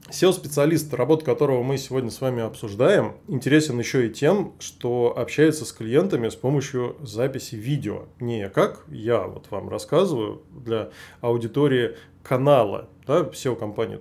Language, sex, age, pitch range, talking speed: Russian, male, 20-39, 120-155 Hz, 135 wpm